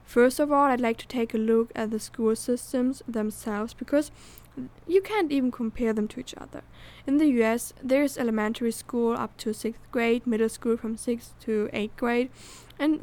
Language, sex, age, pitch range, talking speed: English, female, 10-29, 220-245 Hz, 195 wpm